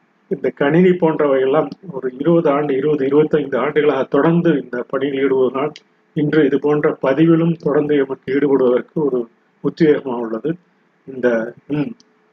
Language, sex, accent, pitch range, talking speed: Tamil, male, native, 130-165 Hz, 120 wpm